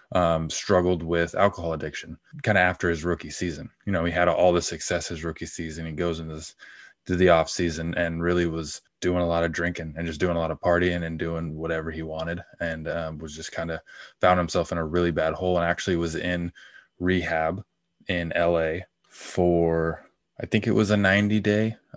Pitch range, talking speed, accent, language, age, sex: 80-90 Hz, 205 wpm, American, English, 20-39, male